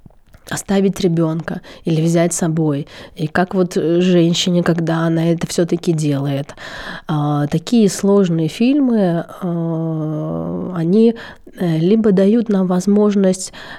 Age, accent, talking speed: 20-39, native, 100 wpm